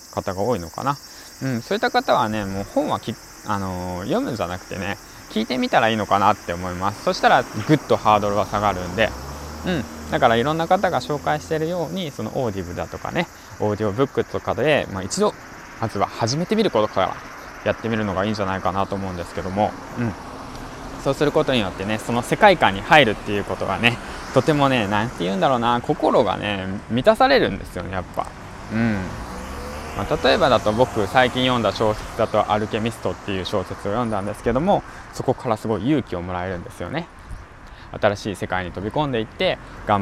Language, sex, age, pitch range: Japanese, male, 20-39, 95-130 Hz